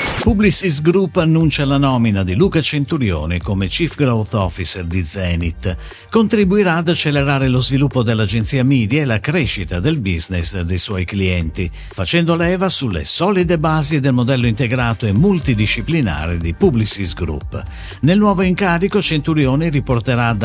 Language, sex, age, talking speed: Italian, male, 50-69, 140 wpm